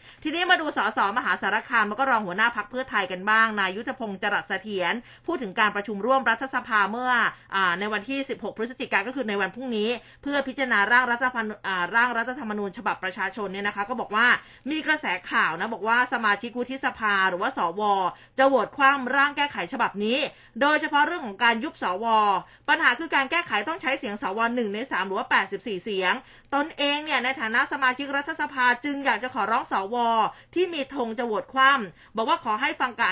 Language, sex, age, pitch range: Thai, female, 20-39, 215-270 Hz